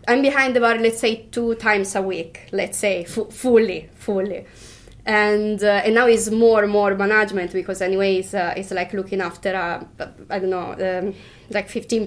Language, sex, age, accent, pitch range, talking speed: English, female, 20-39, Italian, 190-225 Hz, 200 wpm